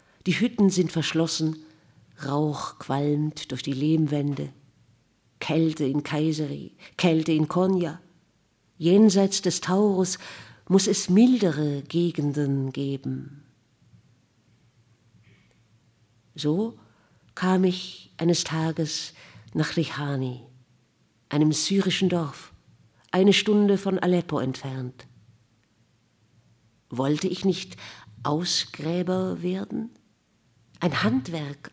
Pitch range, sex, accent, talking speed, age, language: 140-180 Hz, female, German, 85 wpm, 50-69, German